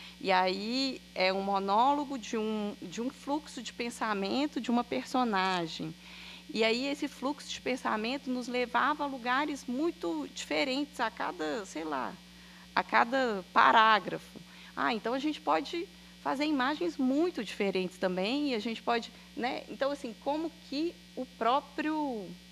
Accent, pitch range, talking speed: Brazilian, 170-255 Hz, 145 wpm